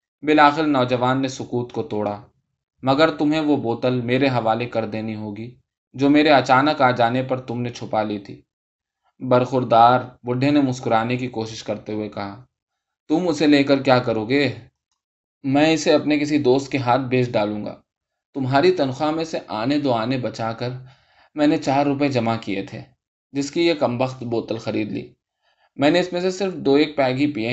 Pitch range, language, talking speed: 115-145 Hz, Urdu, 160 wpm